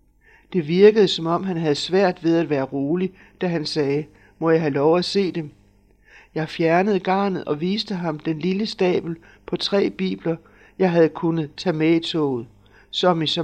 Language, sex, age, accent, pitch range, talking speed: Danish, male, 60-79, native, 150-185 Hz, 190 wpm